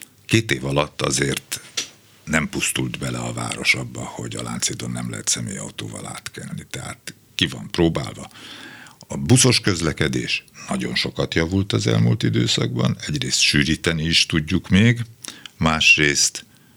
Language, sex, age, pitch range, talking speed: Hungarian, male, 60-79, 65-90 Hz, 130 wpm